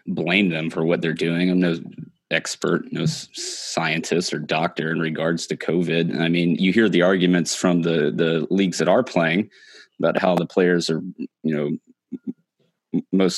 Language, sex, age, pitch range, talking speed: English, male, 20-39, 85-95 Hz, 170 wpm